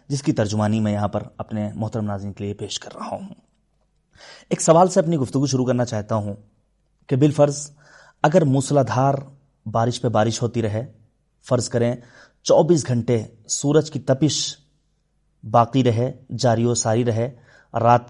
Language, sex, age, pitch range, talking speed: Urdu, male, 30-49, 115-145 Hz, 160 wpm